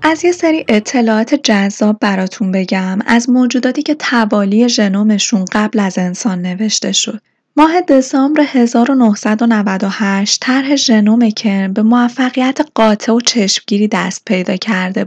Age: 10-29